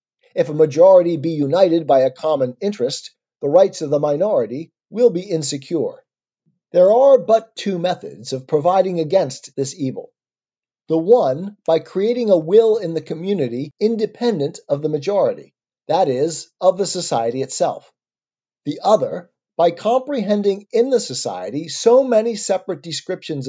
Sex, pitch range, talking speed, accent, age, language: male, 160-220 Hz, 145 wpm, American, 40-59, English